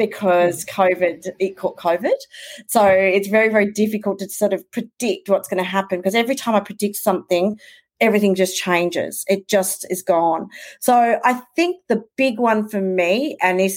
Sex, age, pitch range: female, 40-59, 180-215 Hz